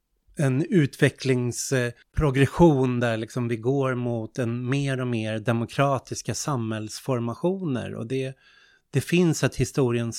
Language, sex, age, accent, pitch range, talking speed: Swedish, male, 30-49, native, 115-140 Hz, 110 wpm